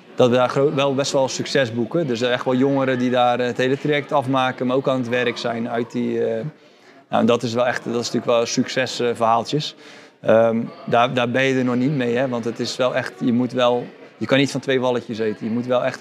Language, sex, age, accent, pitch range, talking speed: Dutch, male, 20-39, Dutch, 120-140 Hz, 245 wpm